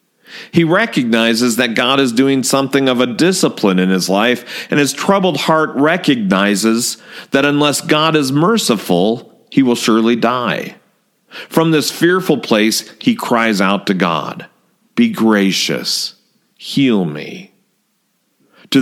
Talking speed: 130 wpm